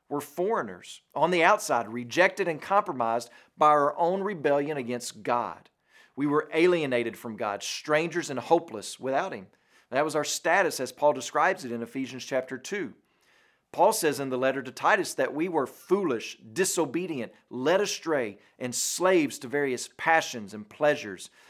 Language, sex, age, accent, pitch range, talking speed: English, male, 40-59, American, 125-175 Hz, 160 wpm